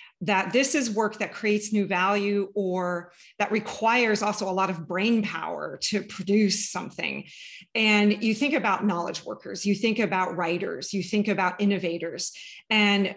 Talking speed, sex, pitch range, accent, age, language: 160 wpm, female, 185-225 Hz, American, 40-59, English